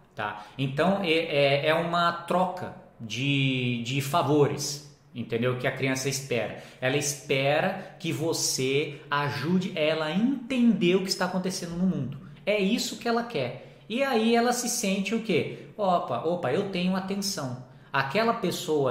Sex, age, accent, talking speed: male, 20-39, Brazilian, 155 wpm